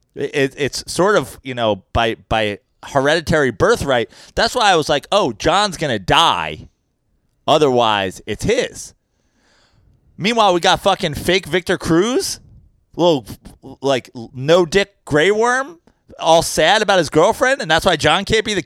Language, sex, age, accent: English, male, 30-49, American